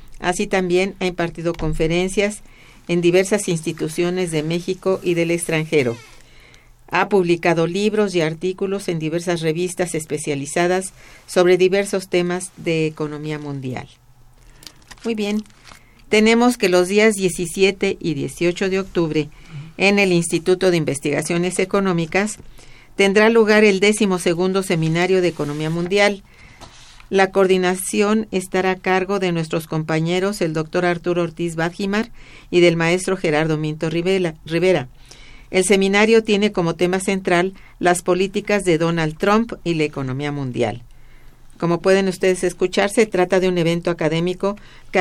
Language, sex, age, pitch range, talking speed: Spanish, female, 50-69, 160-195 Hz, 130 wpm